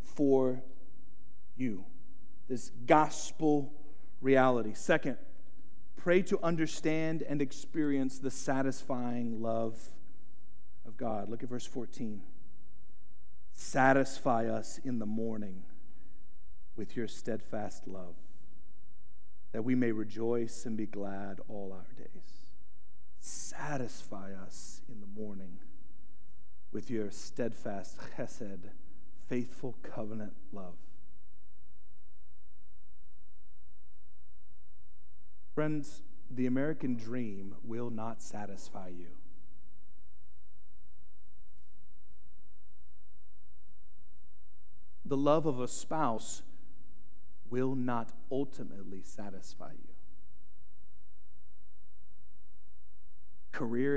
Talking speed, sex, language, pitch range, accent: 80 wpm, male, English, 90-125 Hz, American